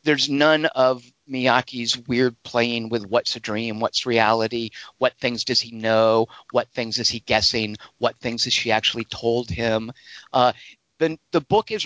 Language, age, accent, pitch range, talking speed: English, 50-69, American, 120-160 Hz, 170 wpm